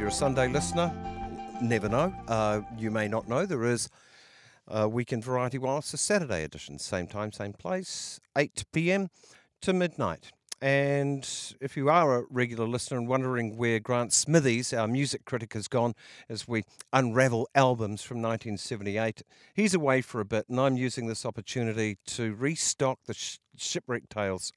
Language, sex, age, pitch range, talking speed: English, male, 50-69, 110-135 Hz, 165 wpm